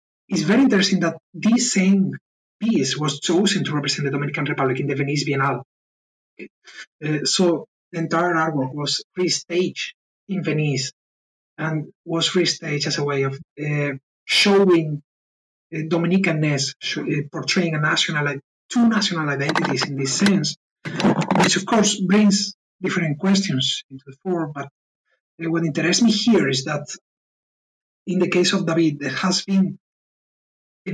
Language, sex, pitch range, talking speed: English, male, 145-190 Hz, 145 wpm